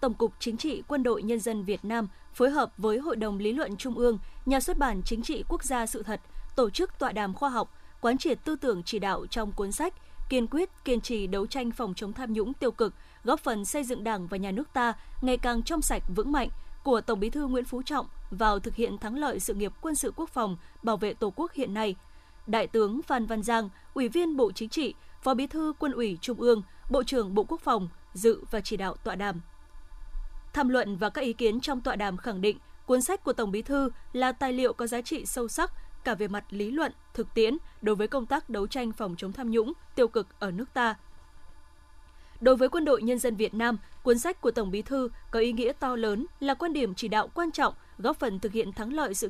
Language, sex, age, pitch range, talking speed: Vietnamese, female, 20-39, 215-270 Hz, 245 wpm